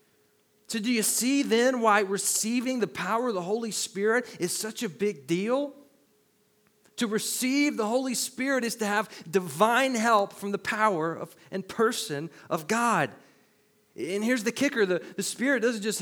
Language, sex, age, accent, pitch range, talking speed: English, male, 30-49, American, 160-220 Hz, 170 wpm